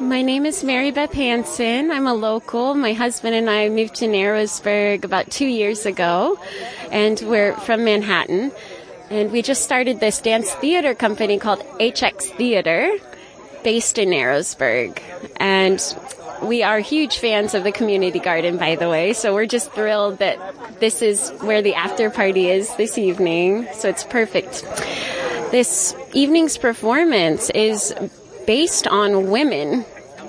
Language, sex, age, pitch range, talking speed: English, female, 20-39, 190-235 Hz, 145 wpm